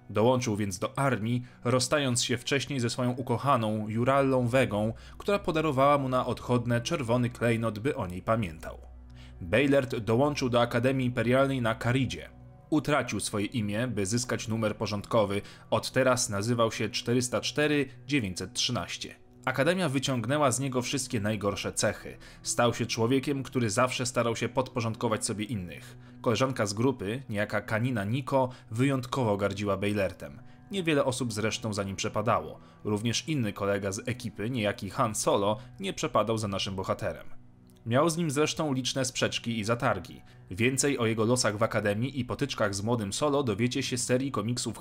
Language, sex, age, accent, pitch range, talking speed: Polish, male, 30-49, native, 105-130 Hz, 150 wpm